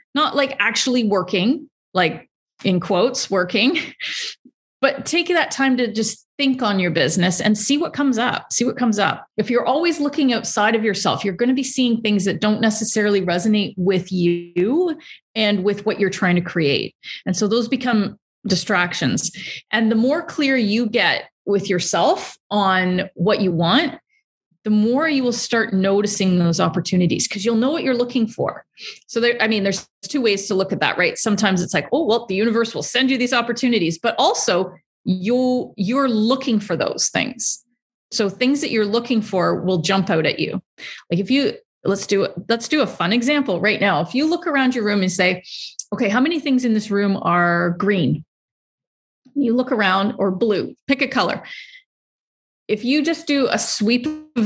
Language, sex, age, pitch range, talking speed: English, female, 30-49, 195-255 Hz, 190 wpm